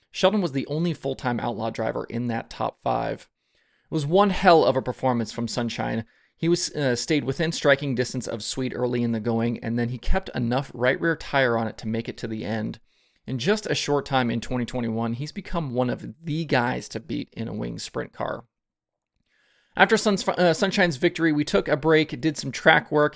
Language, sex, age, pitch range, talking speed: English, male, 30-49, 115-150 Hz, 210 wpm